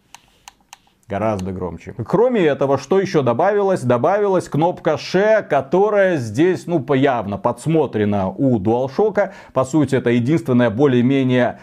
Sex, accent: male, native